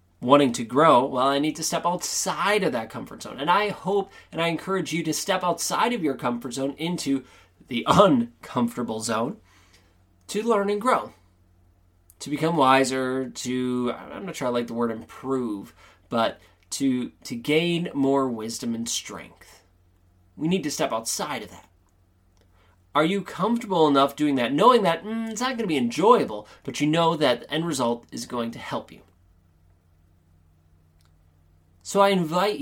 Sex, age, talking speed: male, 20-39, 170 wpm